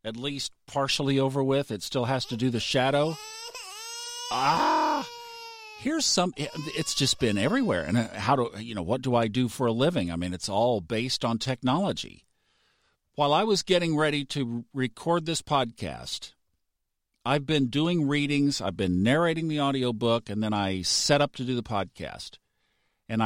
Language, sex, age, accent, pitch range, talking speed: English, male, 50-69, American, 105-150 Hz, 170 wpm